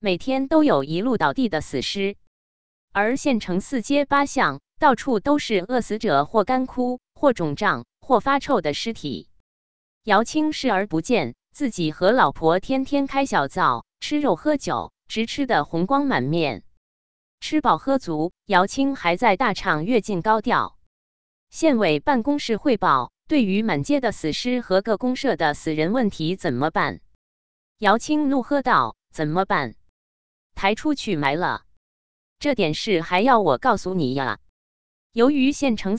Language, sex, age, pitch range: Chinese, female, 20-39, 155-255 Hz